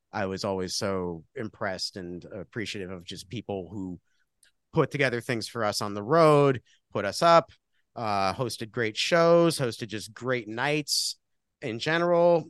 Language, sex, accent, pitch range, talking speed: English, male, American, 95-125 Hz, 155 wpm